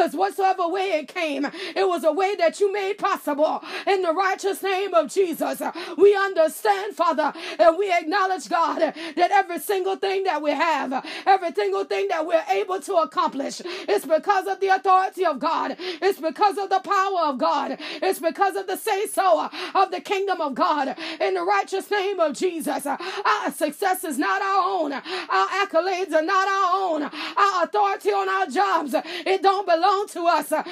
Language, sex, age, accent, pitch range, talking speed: English, female, 30-49, American, 330-390 Hz, 180 wpm